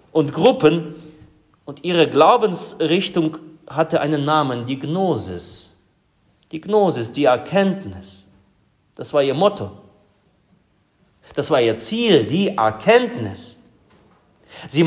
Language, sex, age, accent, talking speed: German, male, 40-59, German, 100 wpm